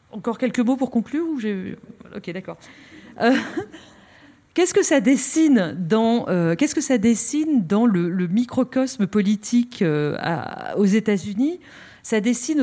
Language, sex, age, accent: French, female, 40-59, French